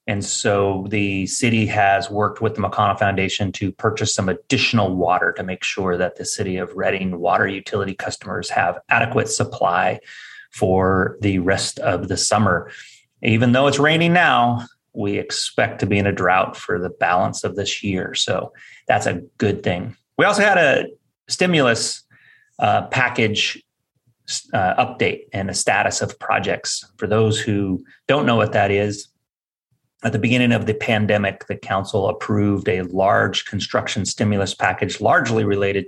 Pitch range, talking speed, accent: 100-115 Hz, 160 wpm, American